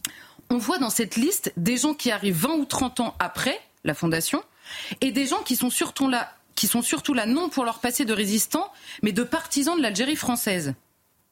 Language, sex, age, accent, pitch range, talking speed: French, female, 30-49, French, 195-255 Hz, 200 wpm